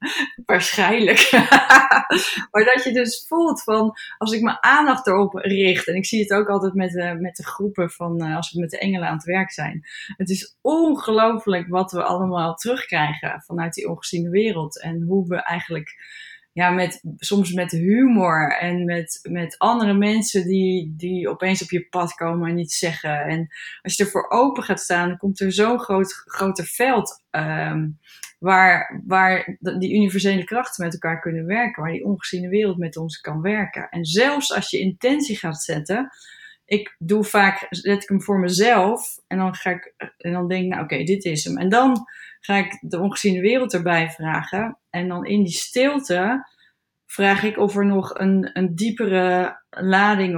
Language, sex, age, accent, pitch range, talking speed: Dutch, female, 20-39, Dutch, 175-210 Hz, 180 wpm